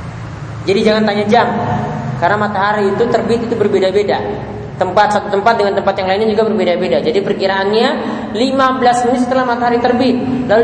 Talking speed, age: 150 wpm, 20-39